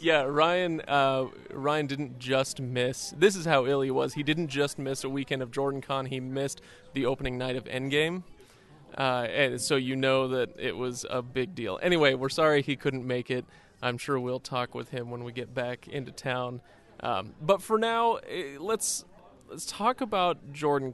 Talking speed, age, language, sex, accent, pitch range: 195 wpm, 30-49, English, male, American, 130-145 Hz